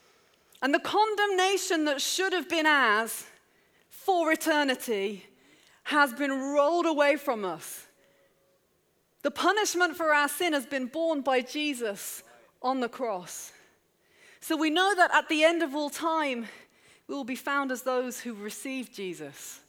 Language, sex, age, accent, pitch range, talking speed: English, female, 30-49, British, 225-310 Hz, 145 wpm